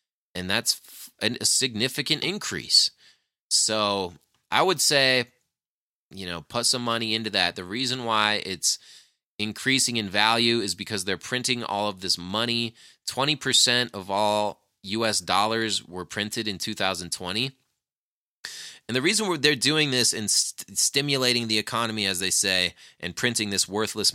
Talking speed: 145 wpm